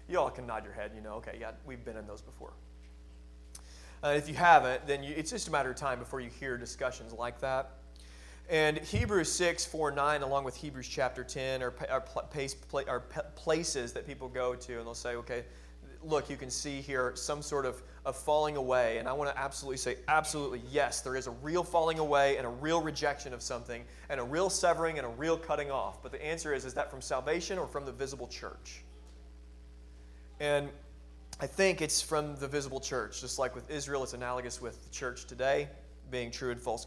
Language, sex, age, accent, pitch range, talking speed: English, male, 30-49, American, 120-150 Hz, 210 wpm